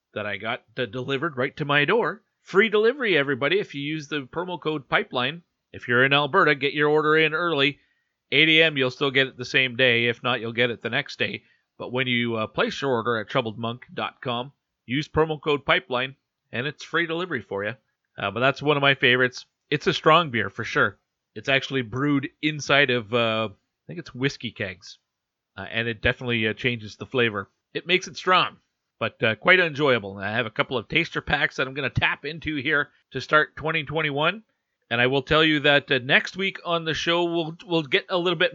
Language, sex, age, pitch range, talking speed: English, male, 40-59, 125-155 Hz, 215 wpm